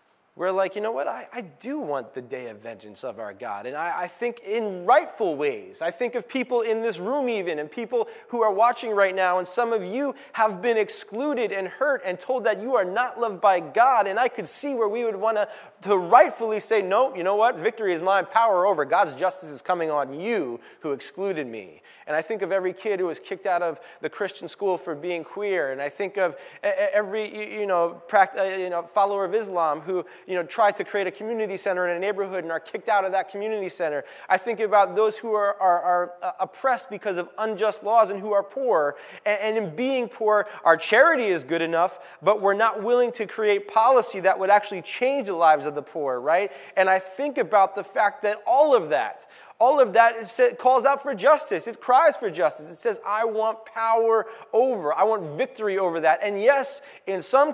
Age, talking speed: 30-49, 225 wpm